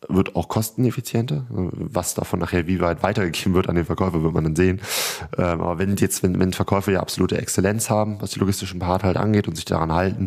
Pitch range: 80-100 Hz